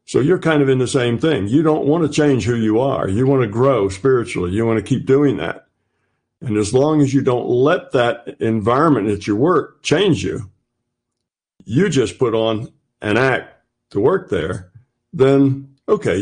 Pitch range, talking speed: 105-140 Hz, 190 wpm